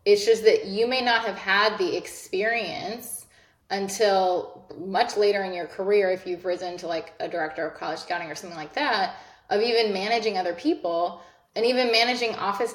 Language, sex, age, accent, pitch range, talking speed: English, female, 20-39, American, 185-235 Hz, 185 wpm